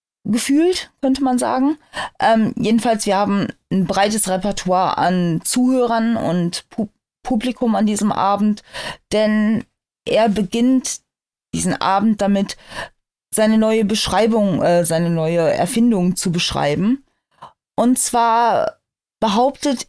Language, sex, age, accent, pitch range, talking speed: German, female, 20-39, German, 190-230 Hz, 110 wpm